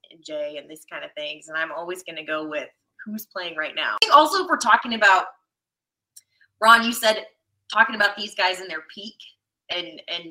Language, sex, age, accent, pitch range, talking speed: English, female, 20-39, American, 165-235 Hz, 215 wpm